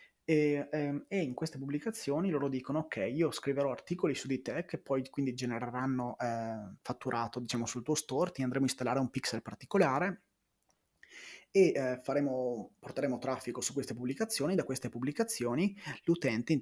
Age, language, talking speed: 20-39, Italian, 155 wpm